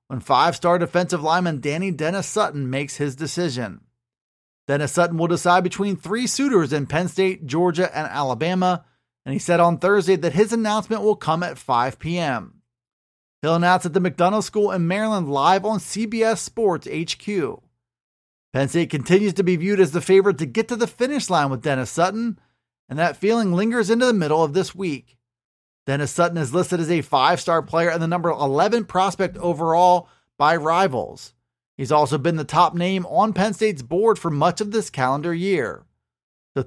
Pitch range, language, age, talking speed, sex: 150-205 Hz, English, 30-49, 175 wpm, male